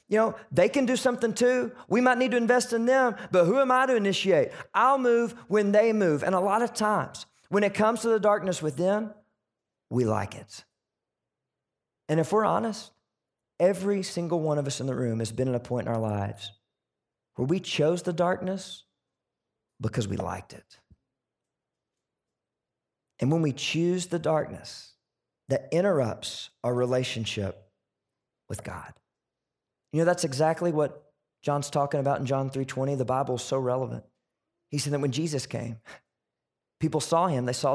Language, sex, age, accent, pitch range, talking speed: English, male, 40-59, American, 125-180 Hz, 170 wpm